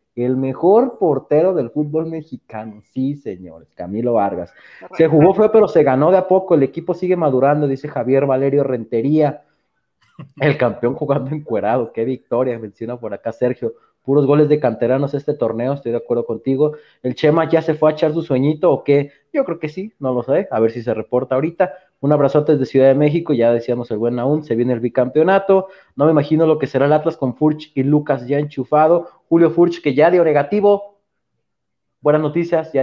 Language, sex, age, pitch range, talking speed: Spanish, male, 30-49, 130-160 Hz, 200 wpm